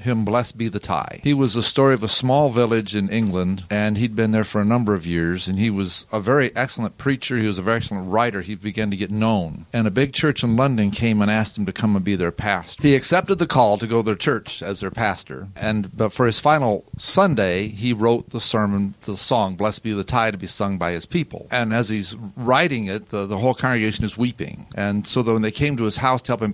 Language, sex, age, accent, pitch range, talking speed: English, male, 40-59, American, 100-125 Hz, 260 wpm